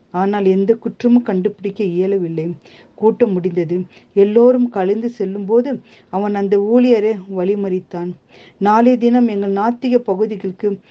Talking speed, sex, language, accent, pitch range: 110 wpm, female, Tamil, native, 195-240 Hz